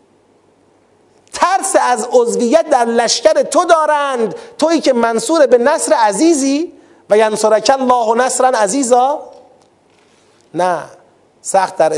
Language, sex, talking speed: Persian, male, 105 wpm